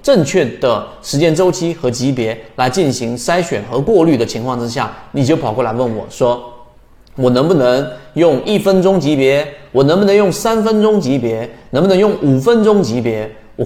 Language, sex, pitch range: Chinese, male, 115-170 Hz